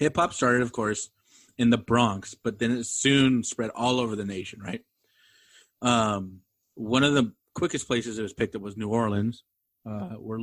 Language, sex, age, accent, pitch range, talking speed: English, male, 30-49, American, 100-120 Hz, 185 wpm